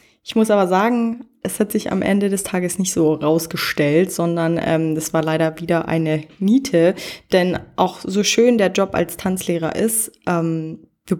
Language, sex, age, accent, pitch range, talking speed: German, female, 20-39, German, 165-205 Hz, 175 wpm